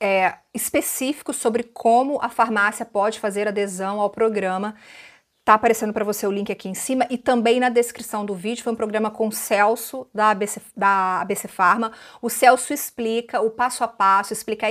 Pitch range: 220-275 Hz